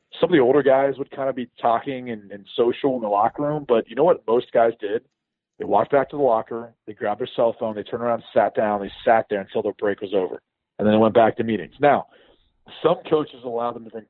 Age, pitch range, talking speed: 40-59, 110-135 Hz, 275 wpm